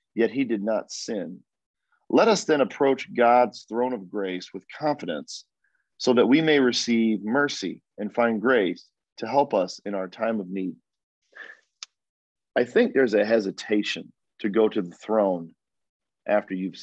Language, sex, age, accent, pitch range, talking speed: English, male, 40-59, American, 100-125 Hz, 155 wpm